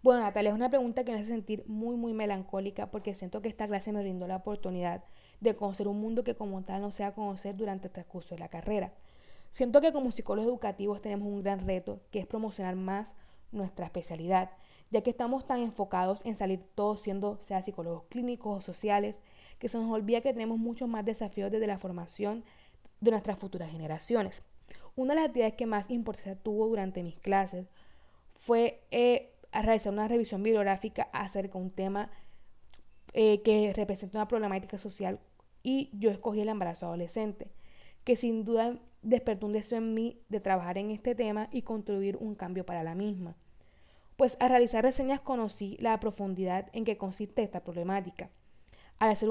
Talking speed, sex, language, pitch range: 185 wpm, female, Spanish, 195-230 Hz